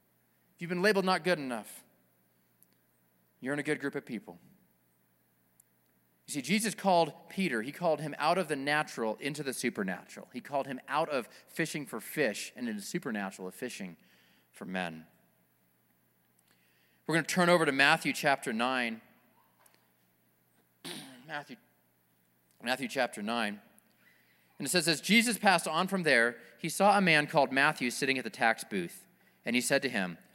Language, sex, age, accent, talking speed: English, male, 30-49, American, 165 wpm